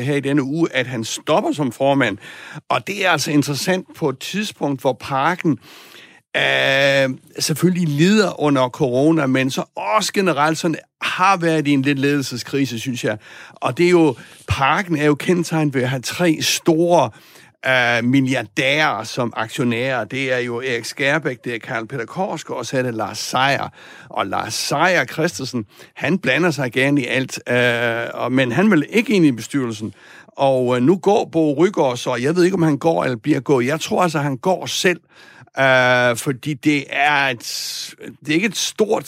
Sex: male